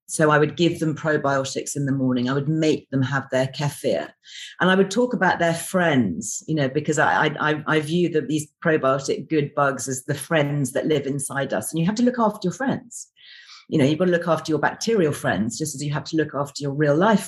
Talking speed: 235 wpm